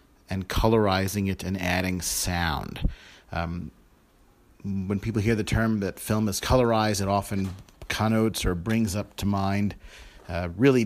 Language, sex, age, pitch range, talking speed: English, male, 40-59, 95-110 Hz, 145 wpm